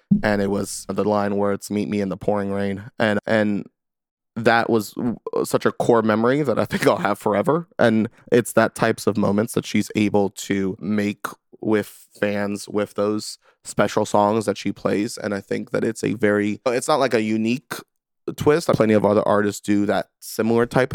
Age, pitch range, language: 20-39, 100-110 Hz, English